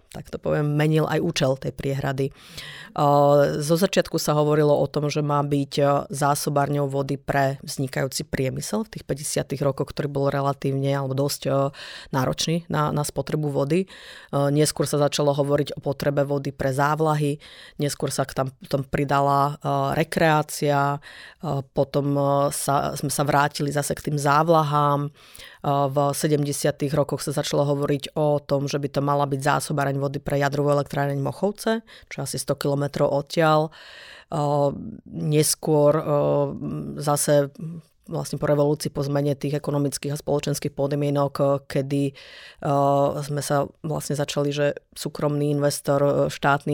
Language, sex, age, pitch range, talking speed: Slovak, female, 30-49, 140-150 Hz, 140 wpm